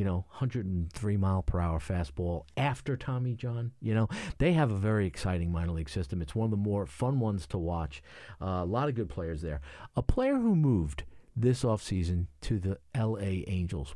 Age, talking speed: 50-69, 185 wpm